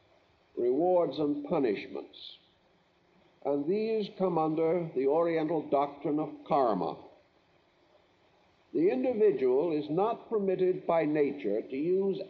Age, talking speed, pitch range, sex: 60-79, 100 wpm, 165-230 Hz, male